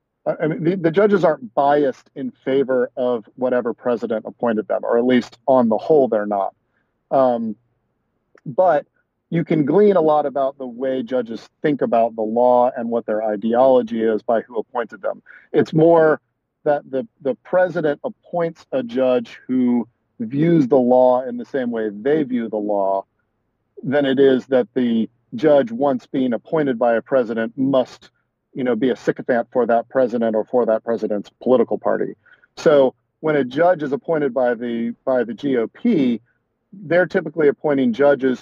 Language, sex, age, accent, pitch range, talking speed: English, male, 40-59, American, 115-145 Hz, 170 wpm